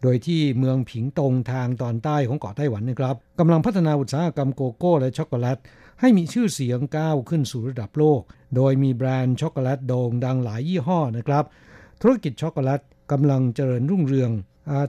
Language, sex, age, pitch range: Thai, male, 60-79, 130-155 Hz